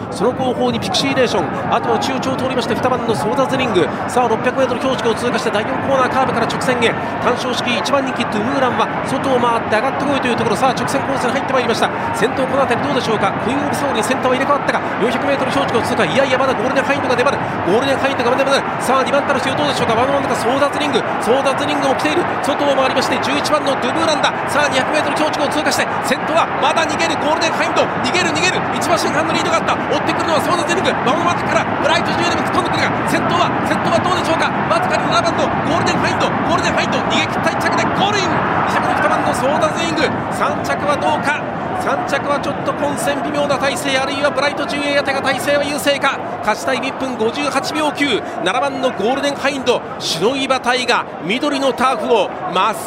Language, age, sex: Japanese, 40-59, male